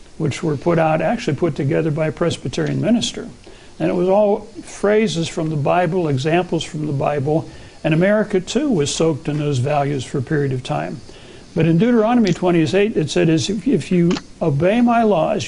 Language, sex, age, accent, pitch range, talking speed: English, male, 60-79, American, 150-195 Hz, 180 wpm